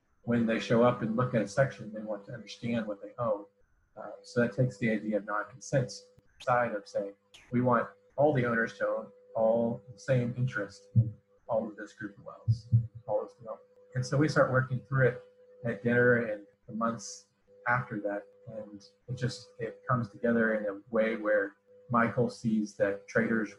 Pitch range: 105-125 Hz